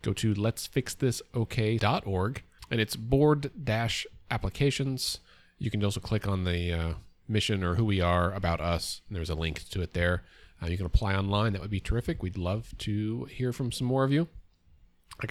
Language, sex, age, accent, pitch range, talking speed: English, male, 30-49, American, 100-135 Hz, 180 wpm